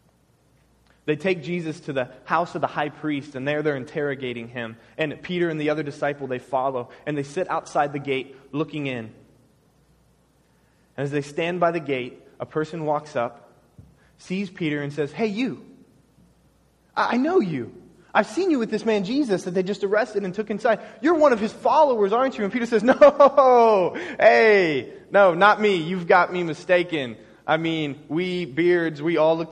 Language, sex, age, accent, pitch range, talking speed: English, male, 20-39, American, 140-190 Hz, 185 wpm